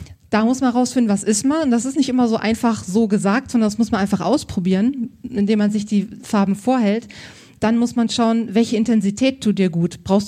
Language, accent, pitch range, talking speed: German, German, 200-235 Hz, 220 wpm